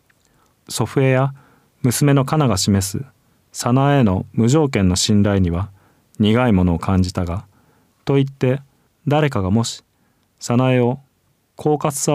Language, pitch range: Japanese, 100-130 Hz